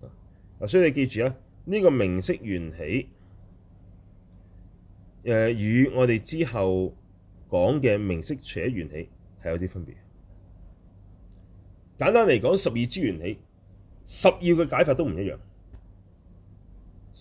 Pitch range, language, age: 95-120 Hz, Chinese, 30-49